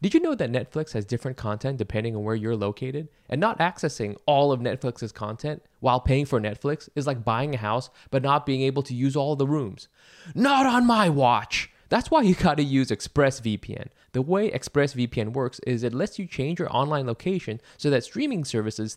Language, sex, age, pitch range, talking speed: English, male, 20-39, 115-170 Hz, 200 wpm